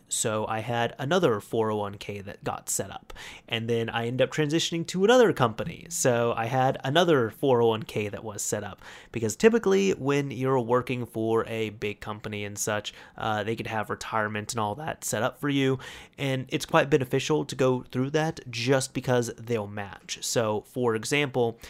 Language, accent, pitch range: English, American, 110-140 Hz